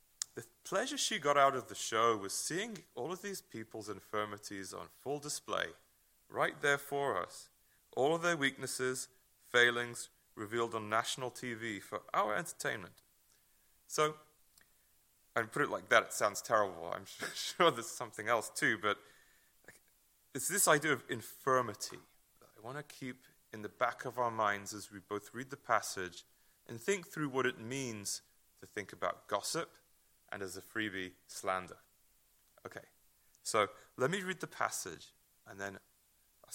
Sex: male